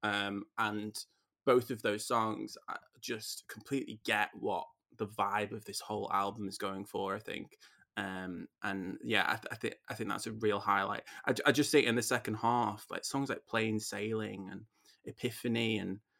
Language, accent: English, British